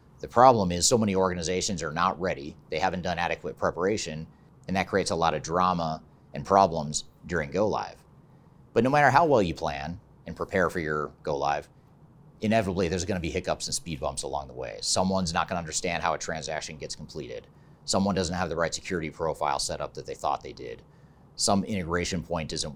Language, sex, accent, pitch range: English, male, American, 85-105 Hz